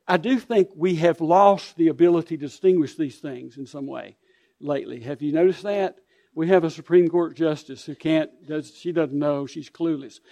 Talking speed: 200 wpm